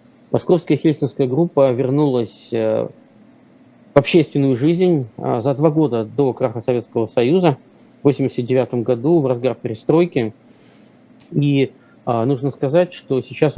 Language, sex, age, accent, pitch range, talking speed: Russian, male, 20-39, native, 120-150 Hz, 110 wpm